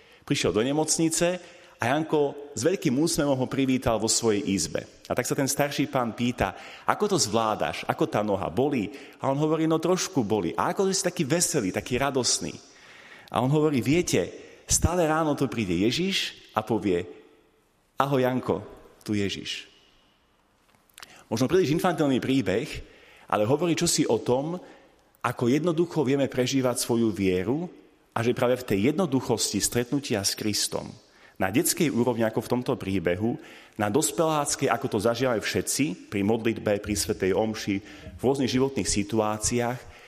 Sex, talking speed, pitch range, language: male, 150 wpm, 105-145 Hz, Slovak